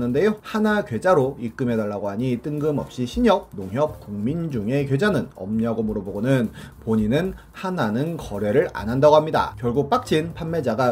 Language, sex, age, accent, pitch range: Korean, male, 30-49, native, 115-165 Hz